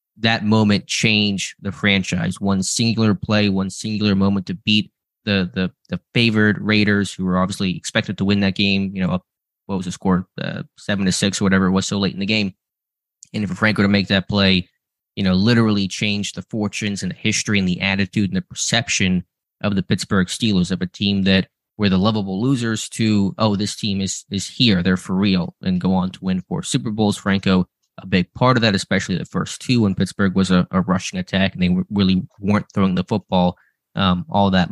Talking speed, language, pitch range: 215 wpm, English, 95-110 Hz